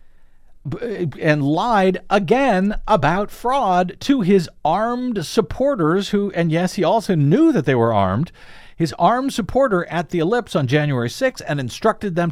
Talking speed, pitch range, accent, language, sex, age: 150 wpm, 125-180 Hz, American, English, male, 50-69